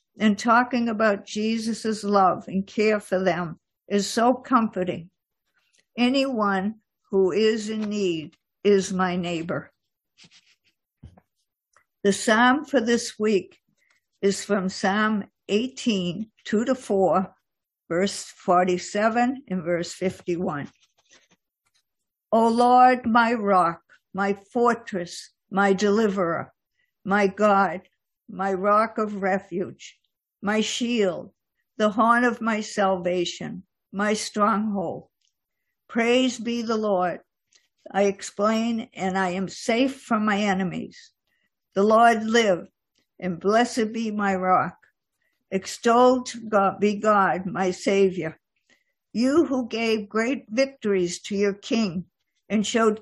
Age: 60-79